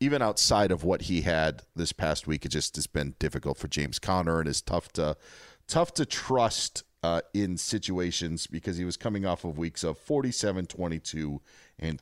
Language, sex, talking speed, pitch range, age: English, male, 190 wpm, 90-135 Hz, 40-59